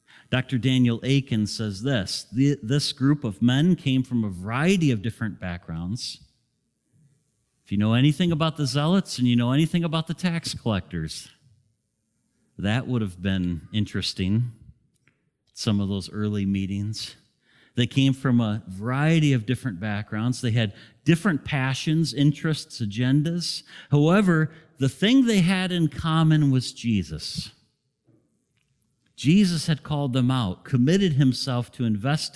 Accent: American